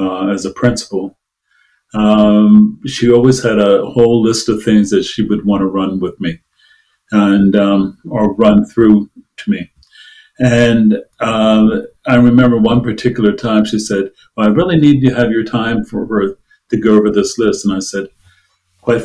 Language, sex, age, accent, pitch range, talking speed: English, male, 50-69, American, 105-125 Hz, 175 wpm